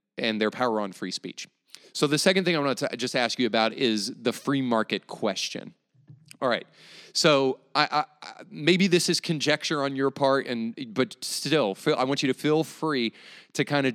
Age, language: 30-49, English